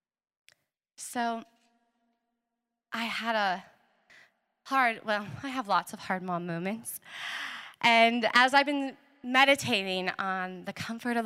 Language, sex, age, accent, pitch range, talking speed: English, female, 20-39, American, 205-295 Hz, 115 wpm